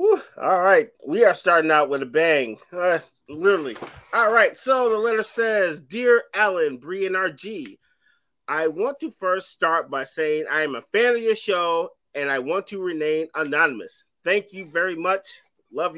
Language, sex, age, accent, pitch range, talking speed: English, male, 30-49, American, 155-245 Hz, 175 wpm